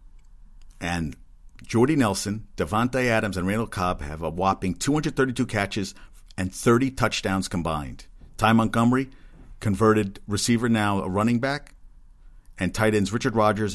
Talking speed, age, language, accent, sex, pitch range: 130 wpm, 50-69, English, American, male, 85-115 Hz